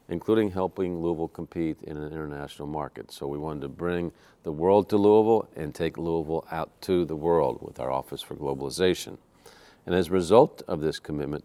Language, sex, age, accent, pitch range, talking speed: English, male, 50-69, American, 75-90 Hz, 190 wpm